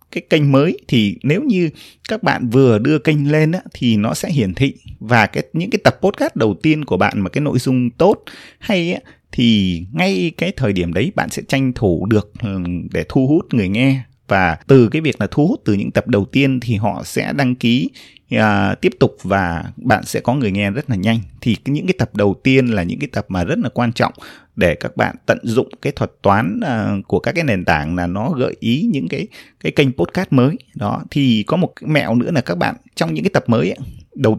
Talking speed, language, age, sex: 235 wpm, Vietnamese, 20-39, male